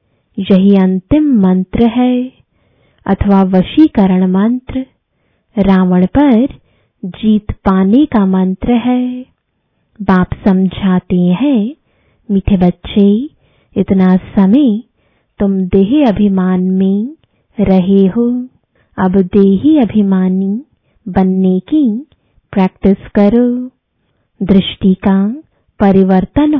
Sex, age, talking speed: female, 20-39, 80 wpm